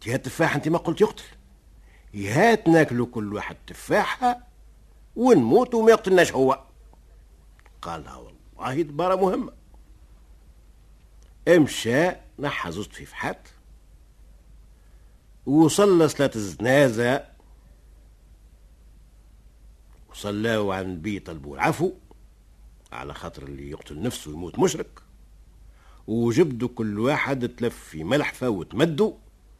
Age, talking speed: 60-79, 95 wpm